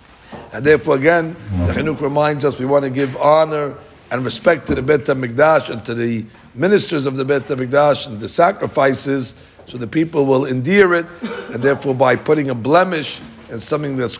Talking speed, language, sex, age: 185 wpm, English, male, 60-79